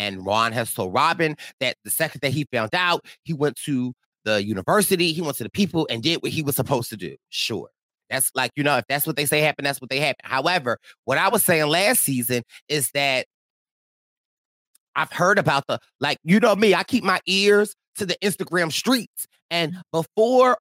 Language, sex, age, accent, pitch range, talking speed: English, male, 30-49, American, 130-185 Hz, 210 wpm